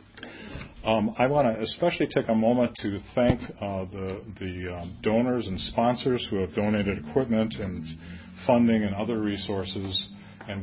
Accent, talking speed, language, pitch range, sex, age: American, 155 wpm, English, 95-115 Hz, male, 40-59